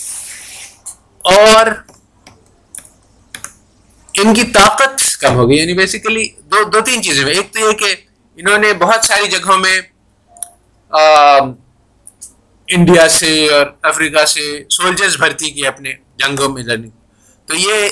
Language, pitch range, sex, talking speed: Urdu, 130-190 Hz, male, 130 wpm